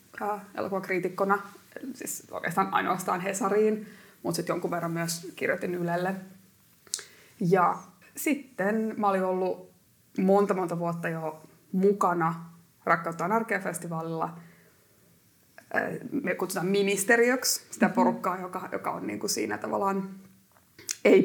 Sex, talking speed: female, 105 wpm